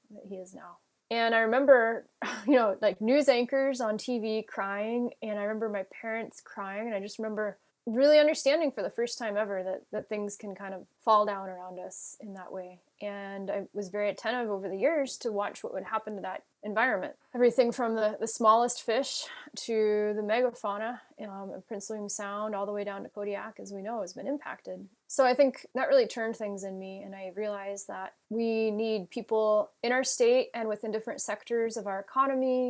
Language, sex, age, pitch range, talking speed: English, female, 20-39, 200-230 Hz, 205 wpm